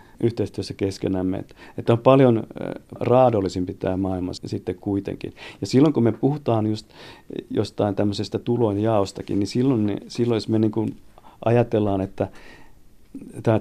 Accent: native